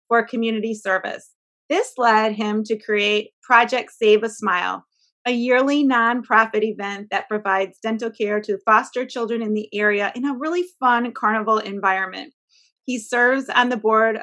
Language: English